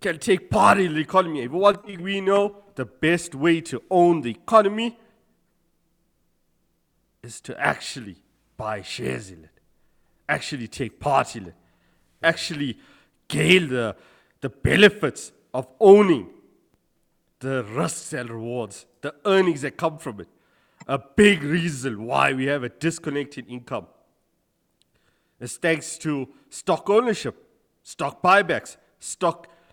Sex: male